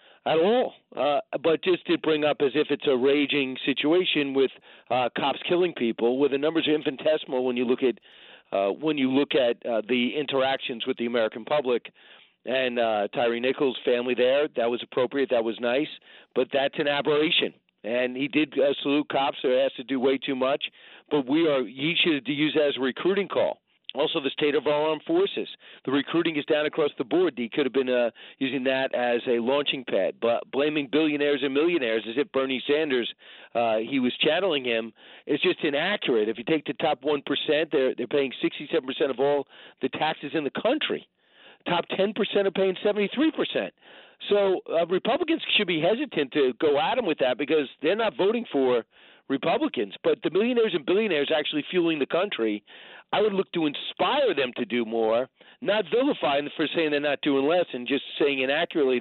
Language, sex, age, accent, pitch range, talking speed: English, male, 40-59, American, 130-160 Hz, 200 wpm